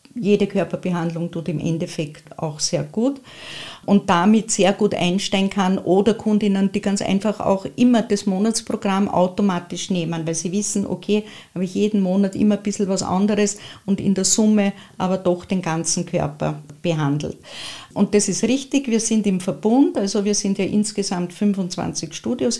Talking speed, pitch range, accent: 165 wpm, 175-210 Hz, Austrian